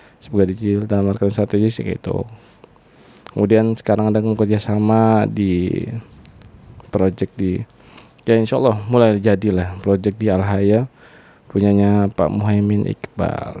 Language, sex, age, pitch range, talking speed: Indonesian, male, 20-39, 100-120 Hz, 100 wpm